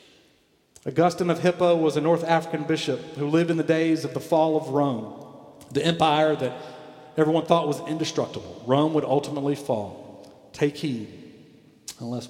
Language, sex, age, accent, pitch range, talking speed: English, male, 50-69, American, 125-160 Hz, 155 wpm